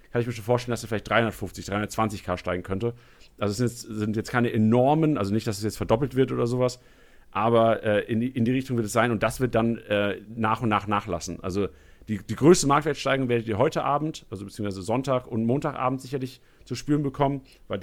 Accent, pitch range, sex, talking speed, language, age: German, 110-135 Hz, male, 225 wpm, German, 40-59